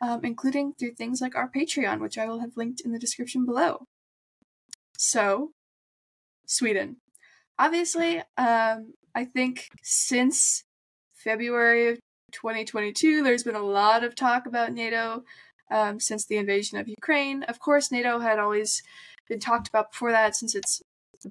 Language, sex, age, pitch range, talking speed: English, female, 10-29, 210-255 Hz, 150 wpm